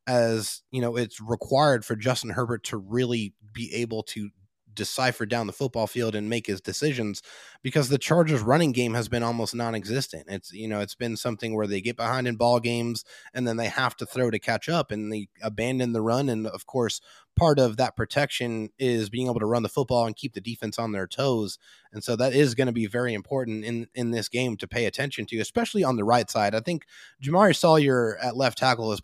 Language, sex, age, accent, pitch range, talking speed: English, male, 20-39, American, 110-130 Hz, 225 wpm